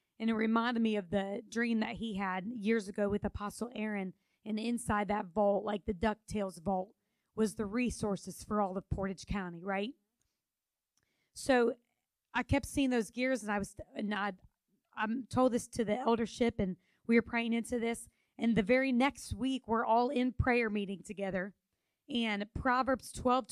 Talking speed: 175 wpm